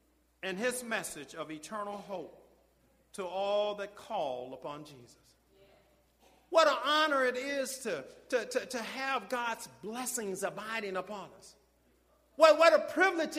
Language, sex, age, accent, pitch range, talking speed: English, male, 50-69, American, 195-315 Hz, 135 wpm